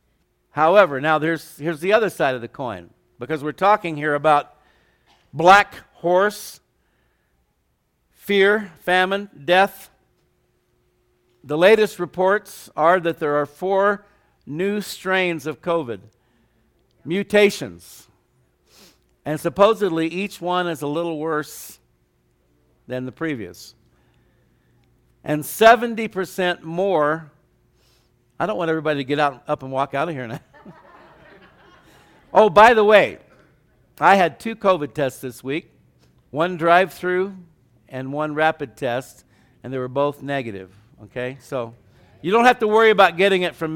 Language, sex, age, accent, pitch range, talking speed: English, male, 60-79, American, 130-185 Hz, 125 wpm